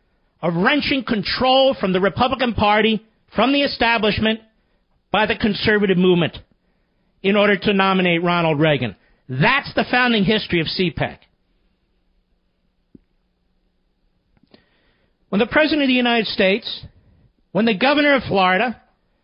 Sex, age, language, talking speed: male, 50-69, English, 120 wpm